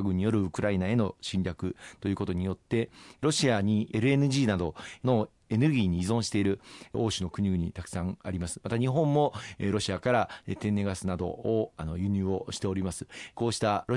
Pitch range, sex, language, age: 90-115 Hz, male, Japanese, 40-59